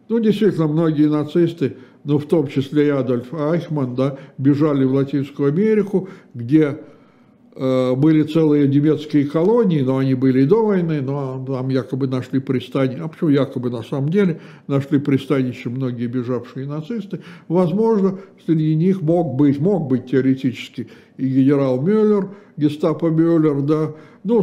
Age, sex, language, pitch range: 60-79, male, Russian, 135-170 Hz